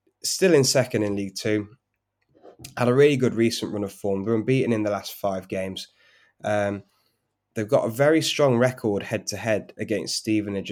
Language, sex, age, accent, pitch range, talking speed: English, male, 10-29, British, 100-125 Hz, 175 wpm